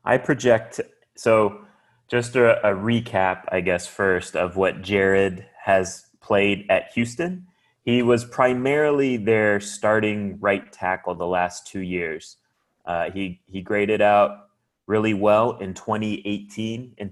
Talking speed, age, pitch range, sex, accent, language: 135 wpm, 30-49, 95-110 Hz, male, American, English